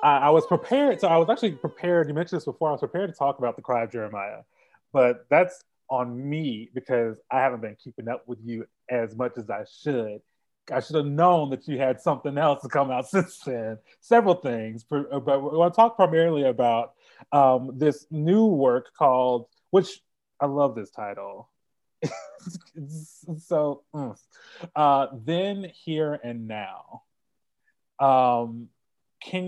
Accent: American